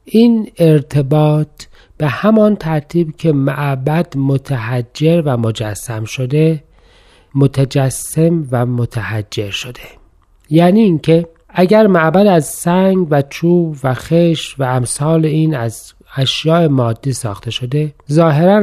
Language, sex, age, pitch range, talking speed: Persian, male, 40-59, 125-165 Hz, 110 wpm